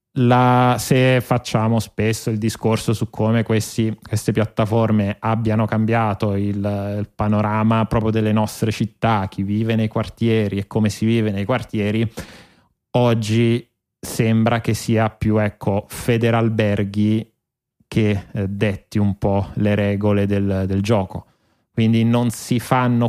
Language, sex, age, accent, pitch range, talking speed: Italian, male, 20-39, native, 100-115 Hz, 135 wpm